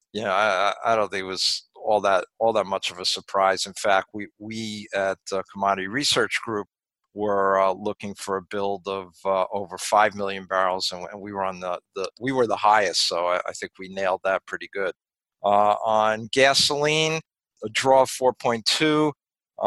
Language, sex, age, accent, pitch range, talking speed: English, male, 50-69, American, 100-125 Hz, 190 wpm